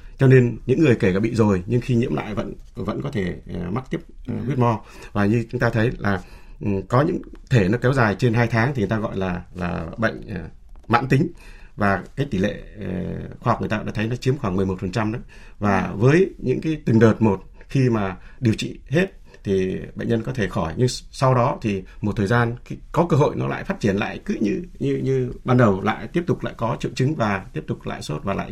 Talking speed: 245 wpm